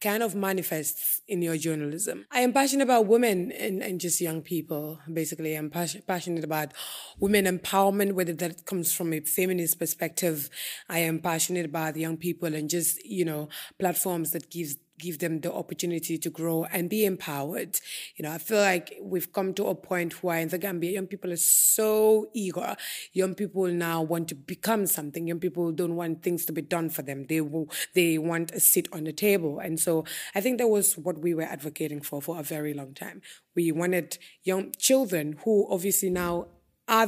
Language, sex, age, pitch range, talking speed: Danish, female, 20-39, 160-195 Hz, 195 wpm